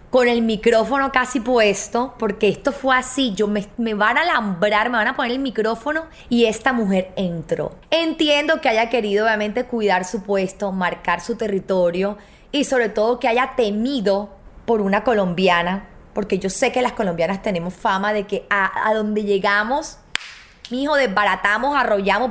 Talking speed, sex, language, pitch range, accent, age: 165 wpm, female, Spanish, 205-265 Hz, American, 20-39